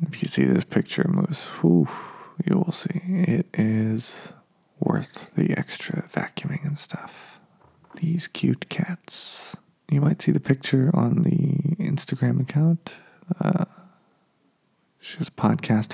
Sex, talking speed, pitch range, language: male, 125 wpm, 120-175 Hz, English